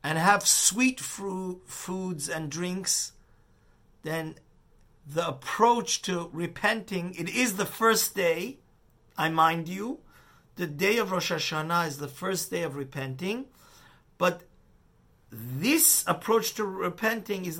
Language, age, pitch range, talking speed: English, 50-69, 150-195 Hz, 125 wpm